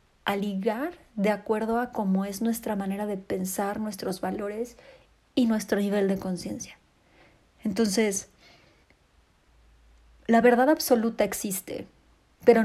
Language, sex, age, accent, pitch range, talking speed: Spanish, female, 30-49, Mexican, 195-230 Hz, 115 wpm